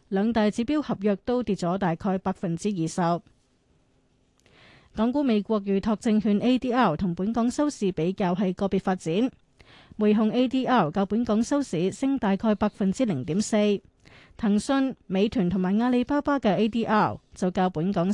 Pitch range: 185-230 Hz